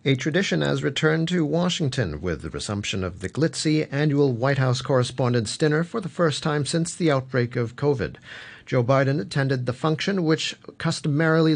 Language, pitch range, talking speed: English, 130-155 Hz, 170 wpm